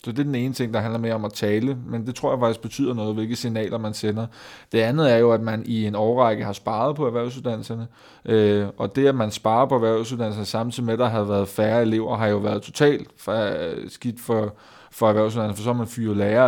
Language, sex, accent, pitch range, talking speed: Danish, male, native, 105-120 Hz, 235 wpm